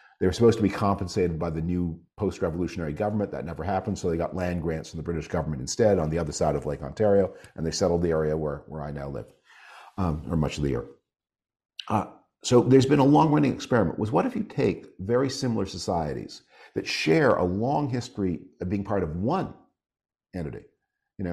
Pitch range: 85-110 Hz